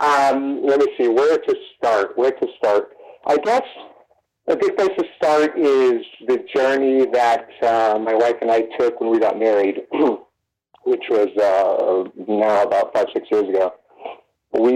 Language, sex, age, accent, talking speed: English, male, 40-59, American, 165 wpm